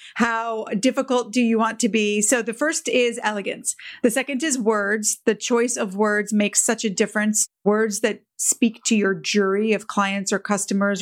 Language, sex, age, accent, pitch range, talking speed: English, female, 30-49, American, 205-240 Hz, 185 wpm